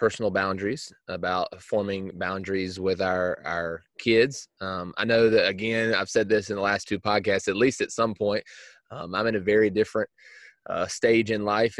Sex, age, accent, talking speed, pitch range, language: male, 20-39, American, 190 wpm, 95-110 Hz, English